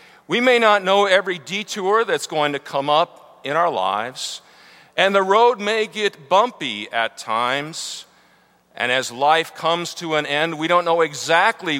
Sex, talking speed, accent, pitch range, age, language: male, 170 wpm, American, 110-160 Hz, 50-69, English